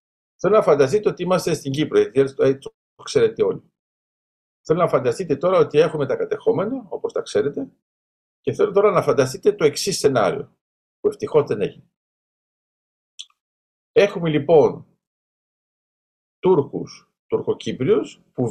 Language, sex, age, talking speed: Greek, male, 50-69, 125 wpm